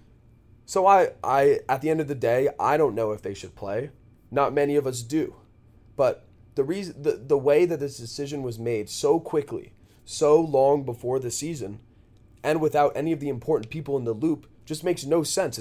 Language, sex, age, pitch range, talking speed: English, male, 20-39, 115-155 Hz, 205 wpm